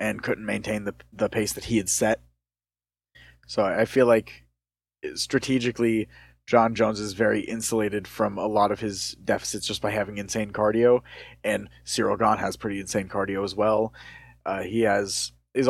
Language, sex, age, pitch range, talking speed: English, male, 20-39, 100-120 Hz, 170 wpm